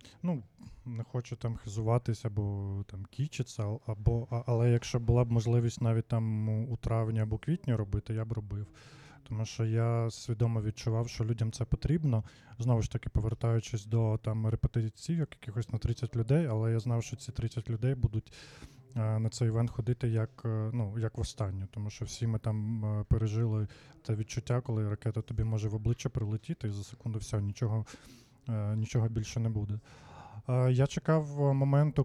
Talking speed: 170 wpm